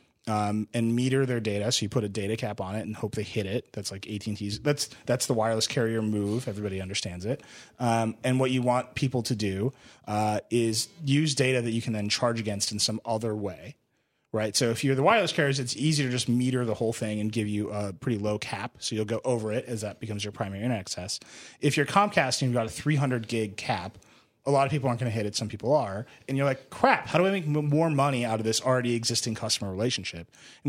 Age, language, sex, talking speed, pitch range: 30-49, English, male, 250 wpm, 105-135 Hz